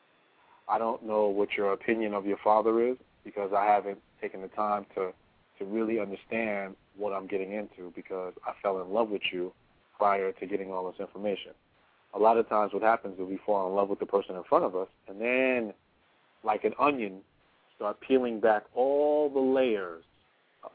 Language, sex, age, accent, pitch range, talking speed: English, male, 30-49, American, 100-130 Hz, 195 wpm